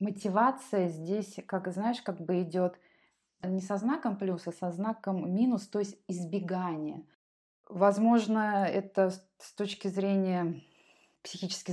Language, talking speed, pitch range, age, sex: Russian, 125 wpm, 170-200 Hz, 20-39, female